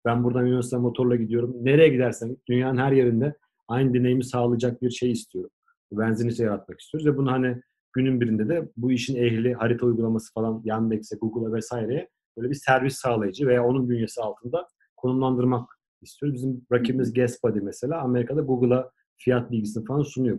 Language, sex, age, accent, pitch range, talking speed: Turkish, male, 40-59, native, 110-130 Hz, 160 wpm